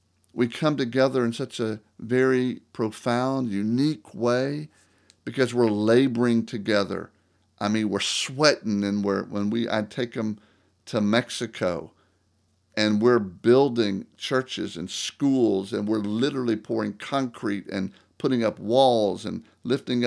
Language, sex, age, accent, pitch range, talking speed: English, male, 50-69, American, 95-120 Hz, 130 wpm